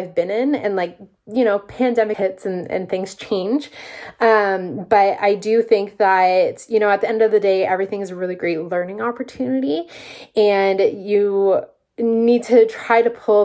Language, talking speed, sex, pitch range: English, 185 wpm, female, 190-230 Hz